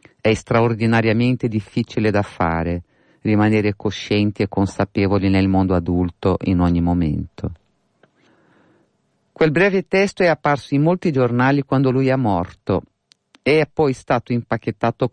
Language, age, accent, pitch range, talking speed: Italian, 50-69, native, 95-115 Hz, 125 wpm